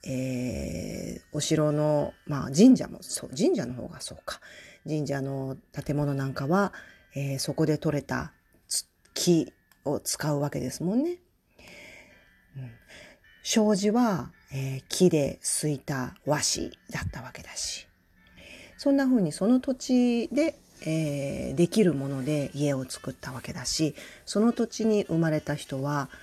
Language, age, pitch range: Japanese, 40-59, 135-210 Hz